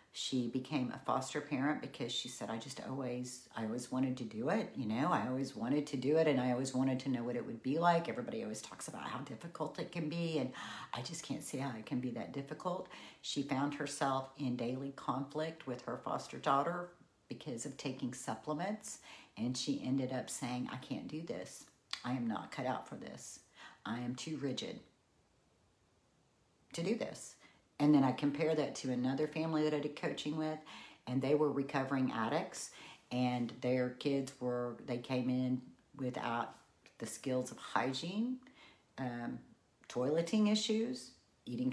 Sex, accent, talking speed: female, American, 185 wpm